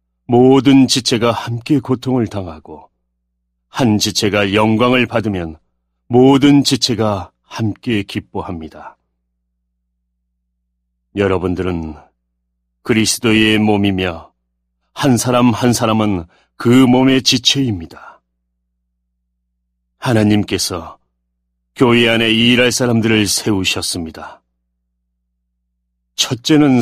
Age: 40-59